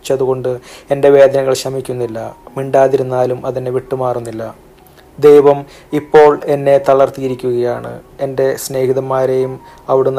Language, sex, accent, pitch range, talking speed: Malayalam, male, native, 125-135 Hz, 80 wpm